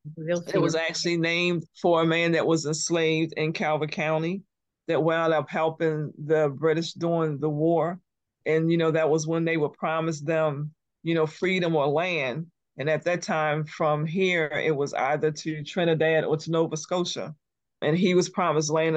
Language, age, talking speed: English, 40-59, 180 wpm